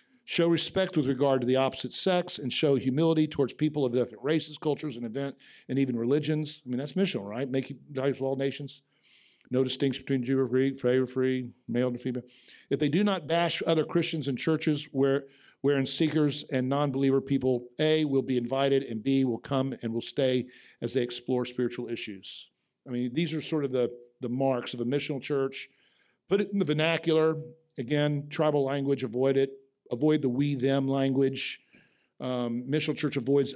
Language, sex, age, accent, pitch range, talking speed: English, male, 50-69, American, 130-160 Hz, 190 wpm